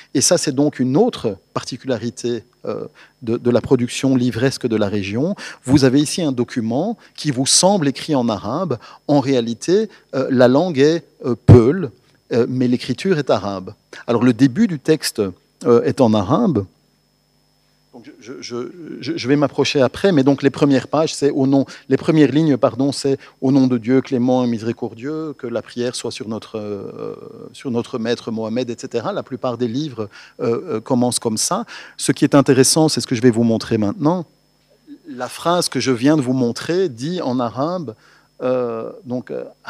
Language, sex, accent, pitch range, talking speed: French, male, French, 120-150 Hz, 175 wpm